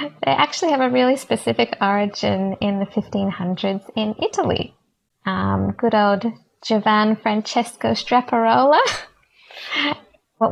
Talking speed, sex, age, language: 110 wpm, female, 20-39, English